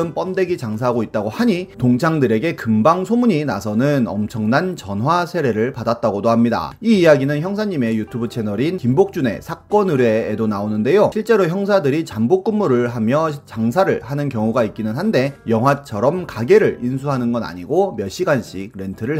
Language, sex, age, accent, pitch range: Korean, male, 30-49, native, 115-180 Hz